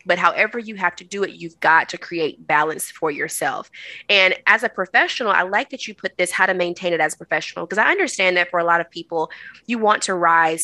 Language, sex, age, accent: English, female, 20-39, American